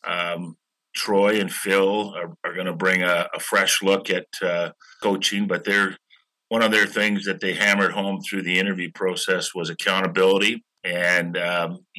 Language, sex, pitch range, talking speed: English, male, 90-100 Hz, 170 wpm